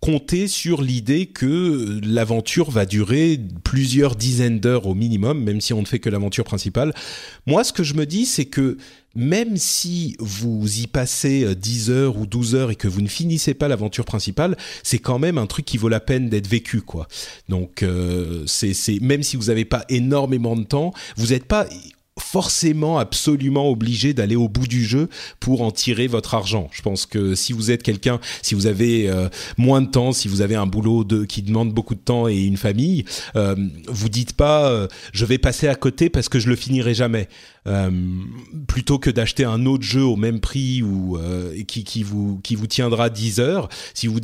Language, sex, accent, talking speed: French, male, French, 205 wpm